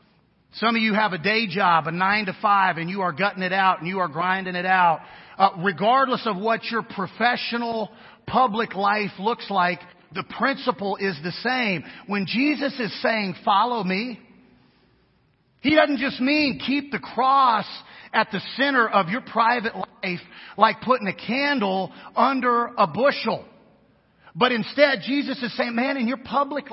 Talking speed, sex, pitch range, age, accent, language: 165 wpm, male, 190-245 Hz, 40-59, American, English